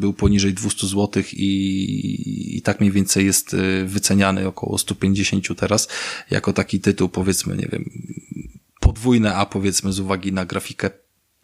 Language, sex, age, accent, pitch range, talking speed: Polish, male, 20-39, native, 95-105 Hz, 140 wpm